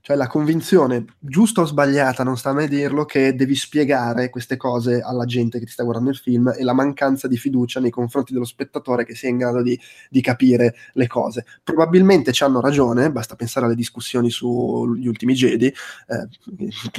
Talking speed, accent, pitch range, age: 190 wpm, native, 120-140 Hz, 20-39